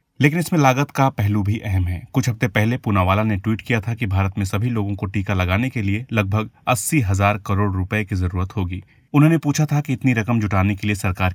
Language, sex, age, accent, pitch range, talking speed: Hindi, male, 30-49, native, 100-125 Hz, 235 wpm